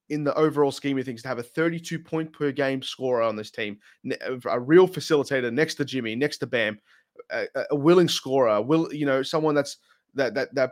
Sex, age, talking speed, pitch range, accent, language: male, 20-39, 215 wpm, 125-150 Hz, Australian, English